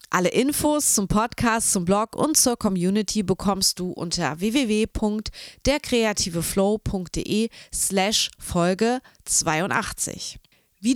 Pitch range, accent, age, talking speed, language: 190-260 Hz, German, 30-49, 75 wpm, German